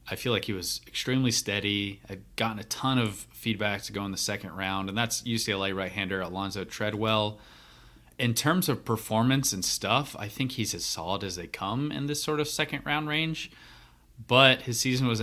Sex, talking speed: male, 195 wpm